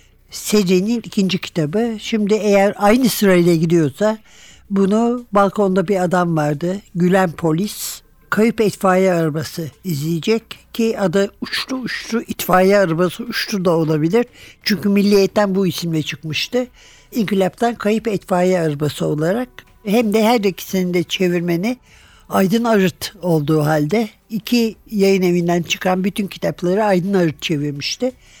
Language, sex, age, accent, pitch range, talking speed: Turkish, male, 60-79, native, 175-225 Hz, 120 wpm